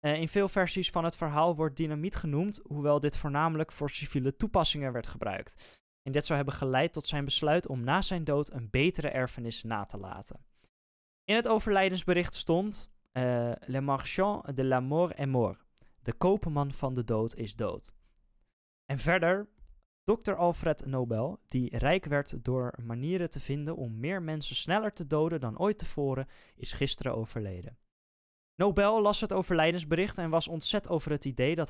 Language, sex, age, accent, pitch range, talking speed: Dutch, male, 10-29, Dutch, 130-170 Hz, 170 wpm